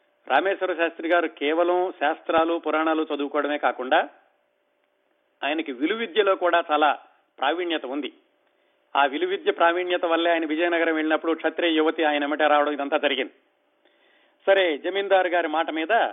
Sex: male